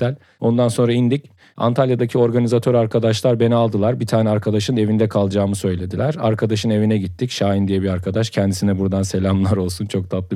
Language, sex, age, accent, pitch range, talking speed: Turkish, male, 40-59, native, 95-120 Hz, 155 wpm